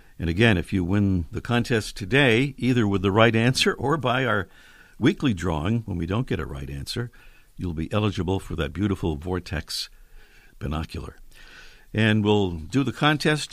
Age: 60-79